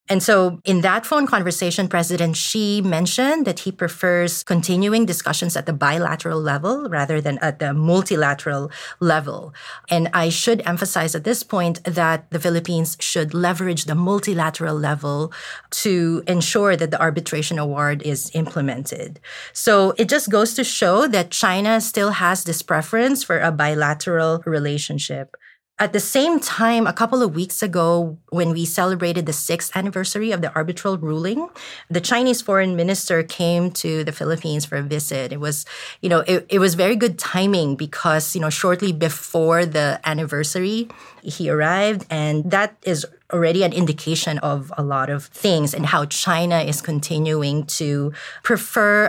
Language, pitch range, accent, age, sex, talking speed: English, 155-195 Hz, Filipino, 30-49, female, 160 wpm